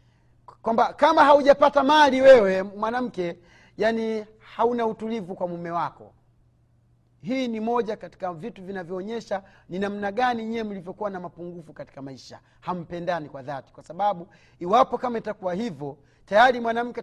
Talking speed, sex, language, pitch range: 135 wpm, male, Swahili, 160-235 Hz